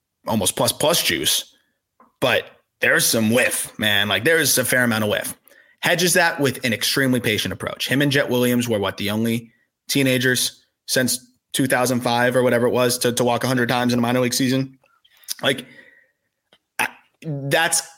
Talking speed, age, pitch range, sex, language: 170 wpm, 30-49, 120-145 Hz, male, English